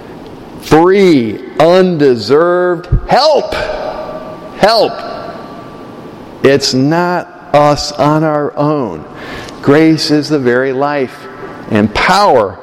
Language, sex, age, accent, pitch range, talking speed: English, male, 50-69, American, 125-155 Hz, 80 wpm